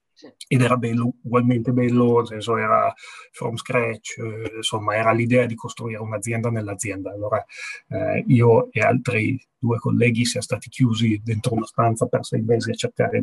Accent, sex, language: native, male, Italian